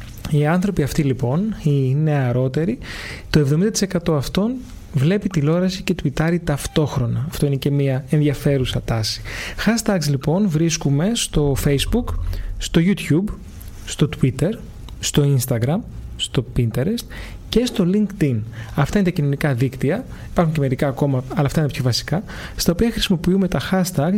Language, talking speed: Greek, 140 wpm